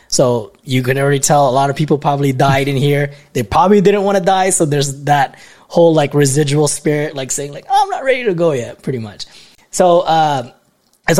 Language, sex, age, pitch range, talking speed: English, male, 20-39, 120-155 Hz, 220 wpm